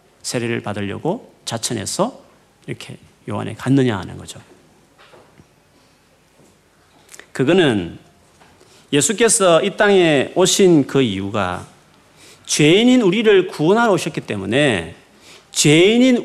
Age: 40-59